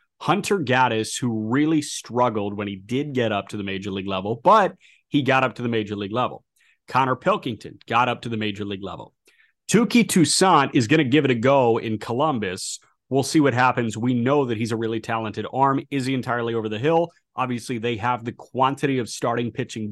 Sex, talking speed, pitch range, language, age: male, 210 wpm, 115-145 Hz, English, 30-49